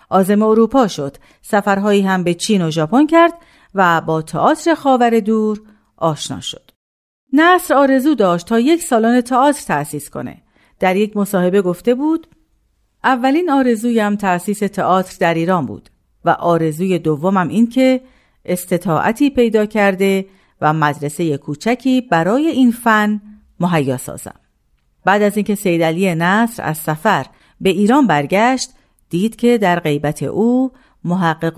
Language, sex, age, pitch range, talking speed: Persian, female, 50-69, 165-245 Hz, 135 wpm